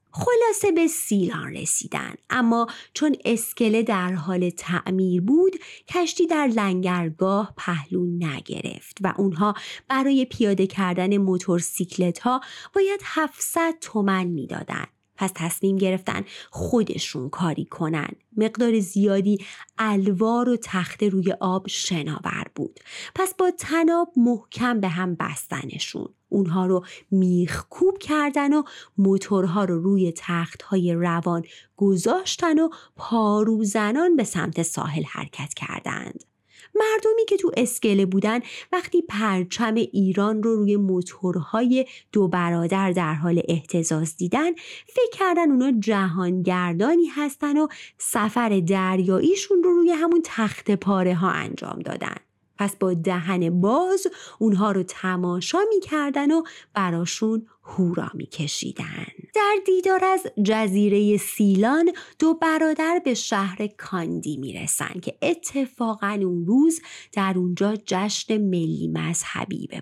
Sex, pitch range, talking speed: female, 185-295 Hz, 115 wpm